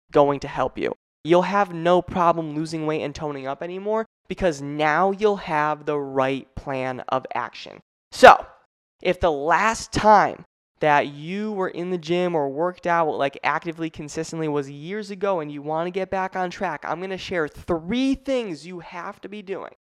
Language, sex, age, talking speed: English, male, 20-39, 185 wpm